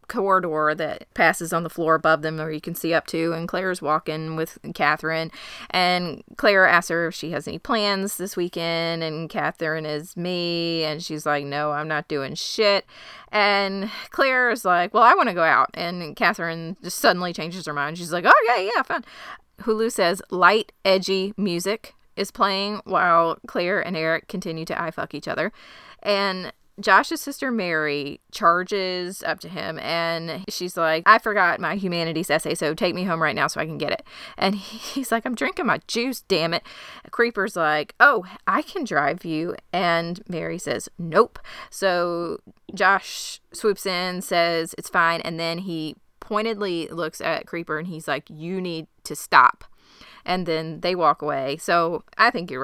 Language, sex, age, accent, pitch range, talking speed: English, female, 20-39, American, 160-195 Hz, 180 wpm